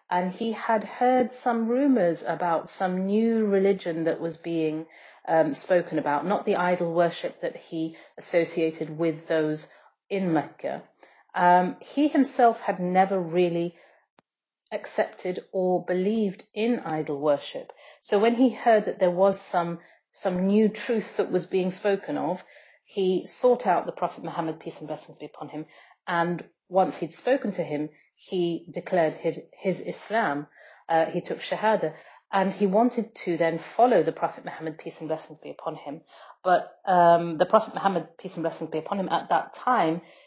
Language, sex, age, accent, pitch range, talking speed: English, female, 30-49, British, 165-210 Hz, 165 wpm